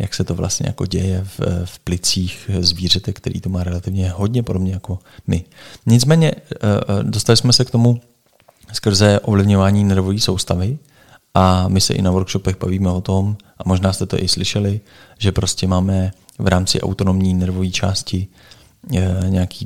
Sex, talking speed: male, 155 wpm